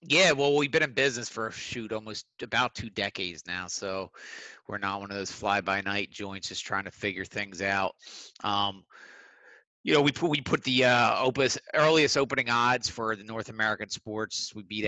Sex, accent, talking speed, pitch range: male, American, 190 wpm, 95-110 Hz